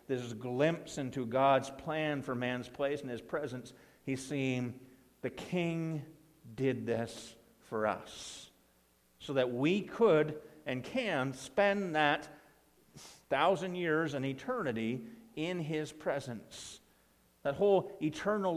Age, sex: 50-69, male